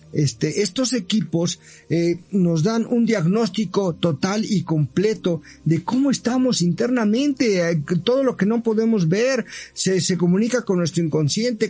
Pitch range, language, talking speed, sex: 145-195 Hz, Spanish, 140 wpm, male